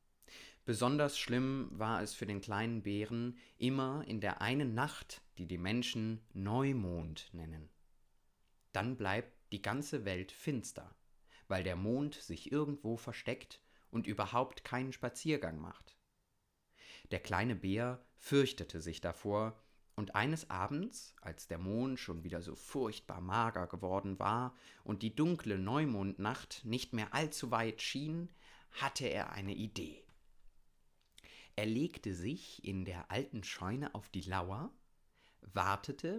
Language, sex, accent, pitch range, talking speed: German, male, German, 95-125 Hz, 130 wpm